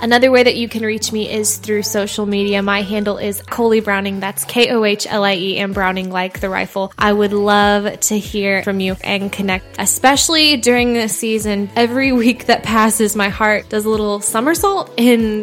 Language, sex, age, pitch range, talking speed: English, female, 10-29, 200-220 Hz, 185 wpm